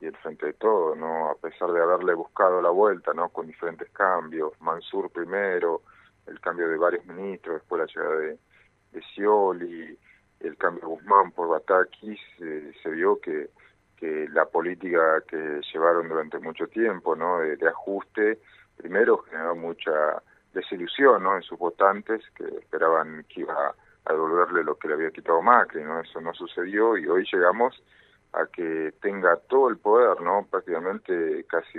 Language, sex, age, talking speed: Spanish, male, 40-59, 165 wpm